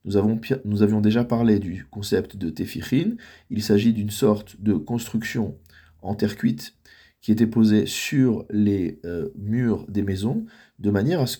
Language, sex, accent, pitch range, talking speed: French, male, French, 105-125 Hz, 170 wpm